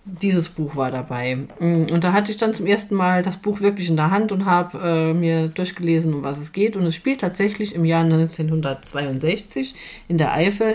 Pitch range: 155-190 Hz